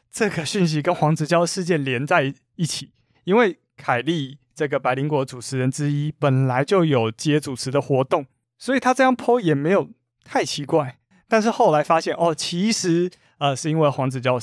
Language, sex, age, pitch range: Chinese, male, 20-39, 135-185 Hz